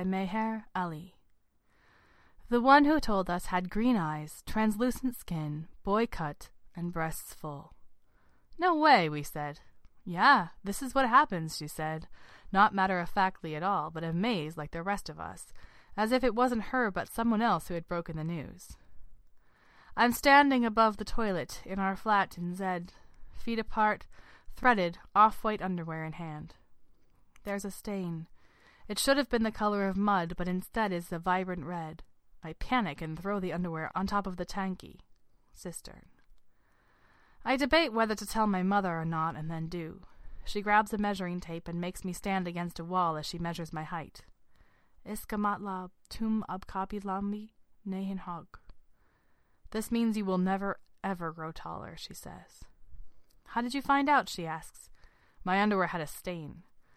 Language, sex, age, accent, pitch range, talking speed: English, female, 20-39, American, 170-220 Hz, 160 wpm